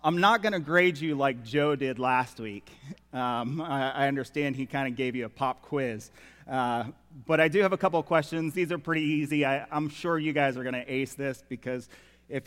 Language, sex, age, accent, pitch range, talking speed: English, male, 30-49, American, 120-165 Hz, 225 wpm